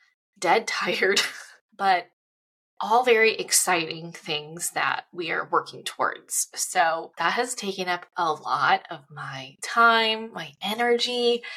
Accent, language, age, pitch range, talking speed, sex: American, English, 20-39, 190-250 Hz, 125 wpm, female